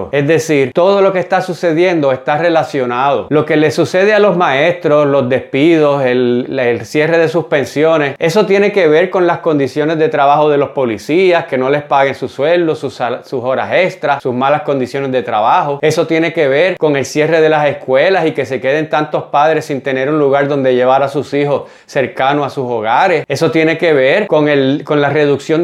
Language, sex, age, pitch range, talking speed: Spanish, male, 30-49, 140-175 Hz, 210 wpm